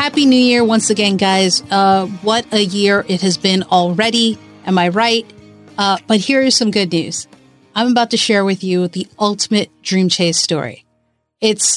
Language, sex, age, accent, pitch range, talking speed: English, female, 40-59, American, 180-220 Hz, 185 wpm